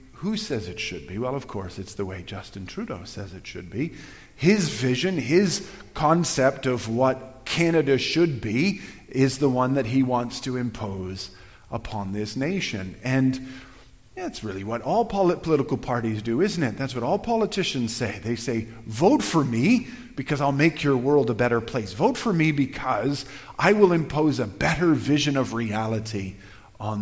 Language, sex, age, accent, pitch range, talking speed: English, male, 40-59, American, 110-150 Hz, 175 wpm